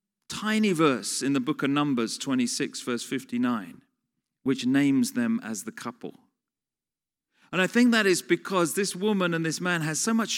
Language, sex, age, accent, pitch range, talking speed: English, male, 40-59, British, 120-195 Hz, 175 wpm